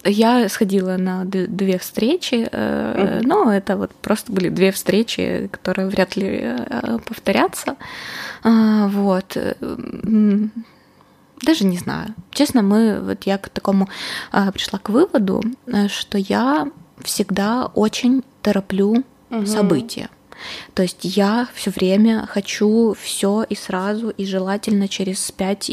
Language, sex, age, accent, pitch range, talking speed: Russian, female, 20-39, native, 185-215 Hz, 110 wpm